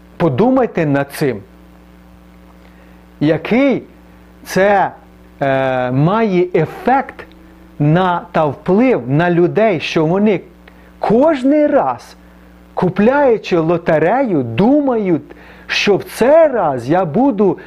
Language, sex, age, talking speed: Ukrainian, male, 40-59, 85 wpm